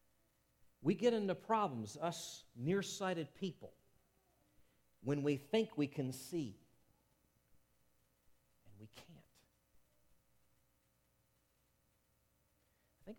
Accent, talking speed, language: American, 75 wpm, English